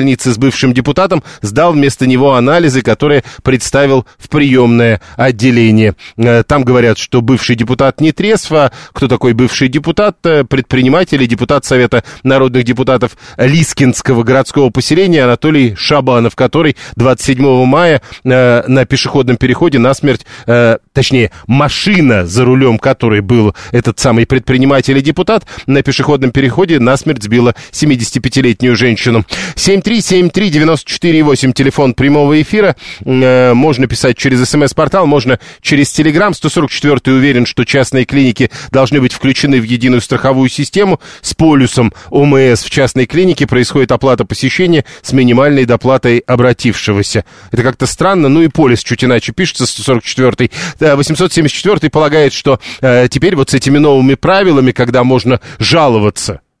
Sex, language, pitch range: male, Russian, 125-145 Hz